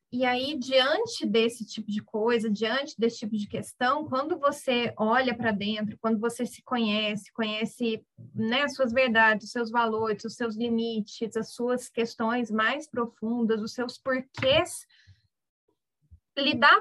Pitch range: 220-265 Hz